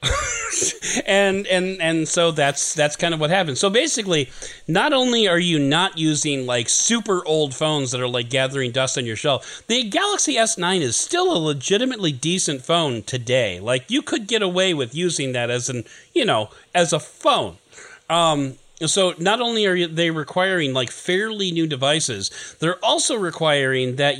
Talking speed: 175 wpm